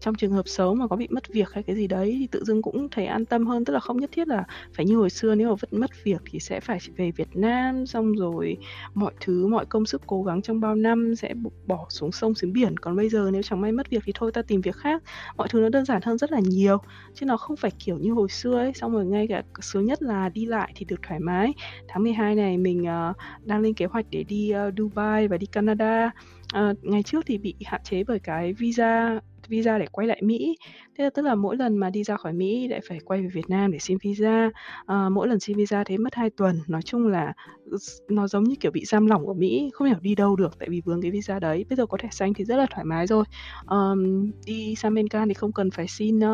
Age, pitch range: 20-39, 190-225 Hz